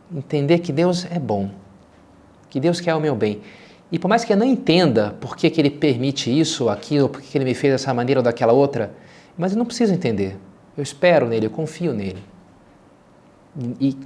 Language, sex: Portuguese, male